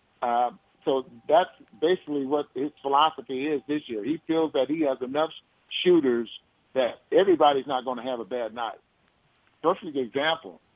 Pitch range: 125-150 Hz